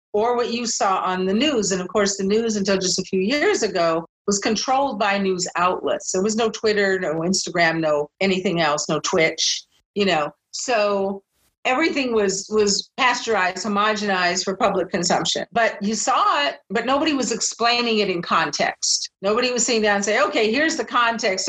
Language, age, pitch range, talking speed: English, 50-69, 175-220 Hz, 185 wpm